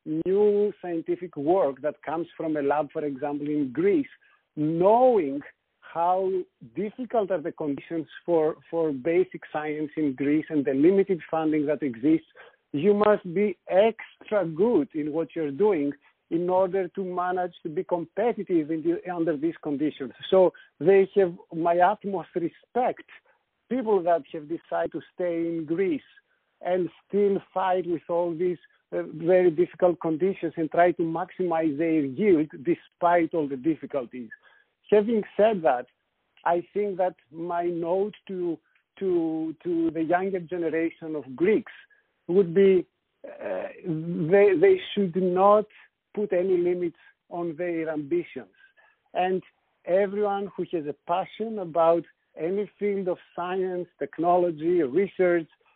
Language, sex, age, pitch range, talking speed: English, male, 50-69, 160-200 Hz, 135 wpm